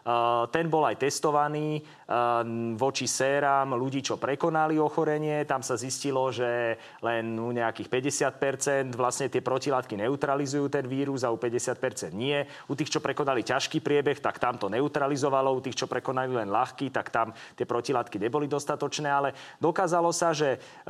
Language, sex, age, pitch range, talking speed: Slovak, male, 30-49, 125-150 Hz, 155 wpm